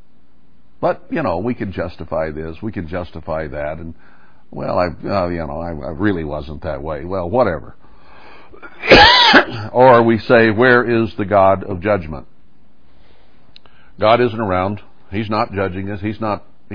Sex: male